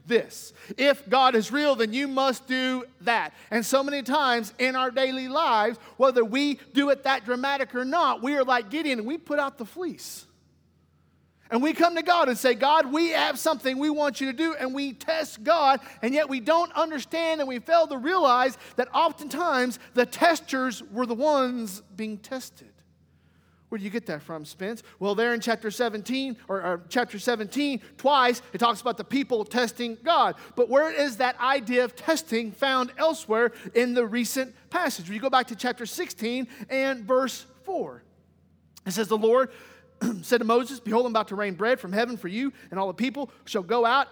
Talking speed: 195 wpm